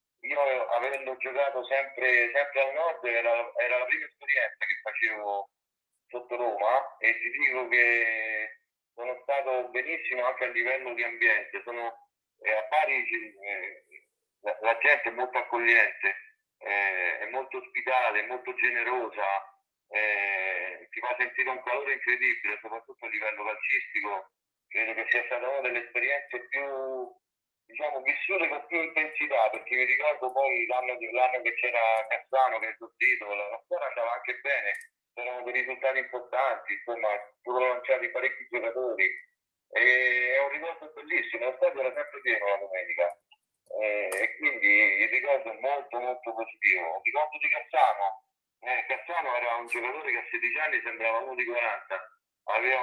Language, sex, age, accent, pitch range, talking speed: Italian, male, 40-59, native, 120-150 Hz, 155 wpm